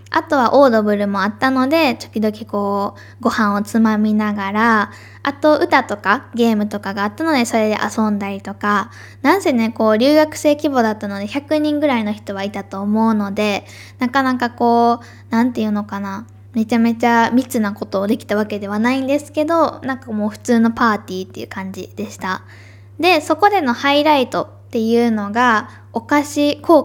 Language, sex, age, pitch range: Japanese, female, 10-29, 205-280 Hz